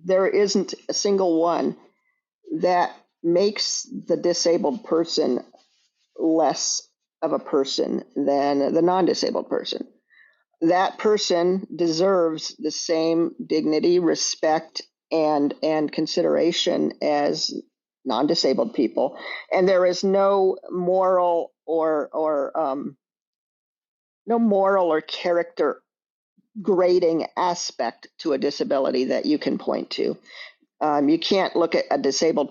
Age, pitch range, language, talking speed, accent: 50-69, 160-205 Hz, English, 110 wpm, American